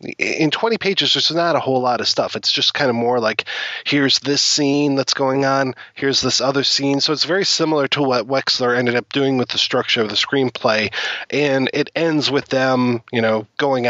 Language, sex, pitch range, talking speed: English, male, 120-140 Hz, 215 wpm